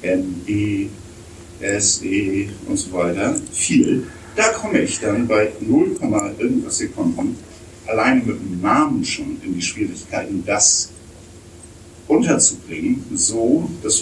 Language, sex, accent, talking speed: German, male, German, 120 wpm